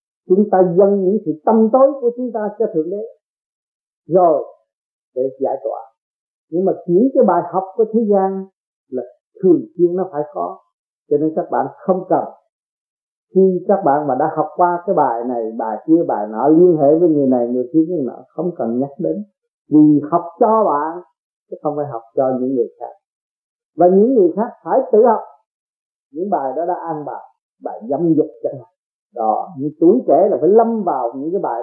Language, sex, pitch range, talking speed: Vietnamese, male, 150-200 Hz, 200 wpm